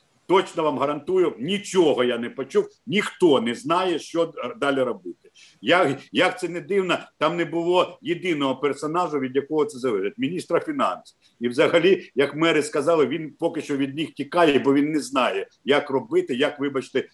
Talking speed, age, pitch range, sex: 170 wpm, 50-69, 135-185 Hz, male